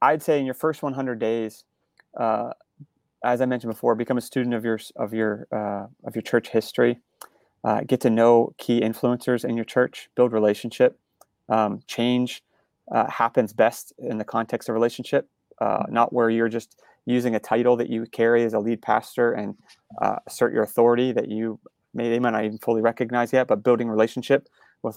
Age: 30-49